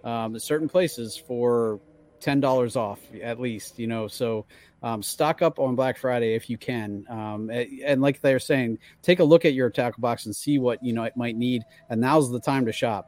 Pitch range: 115-140 Hz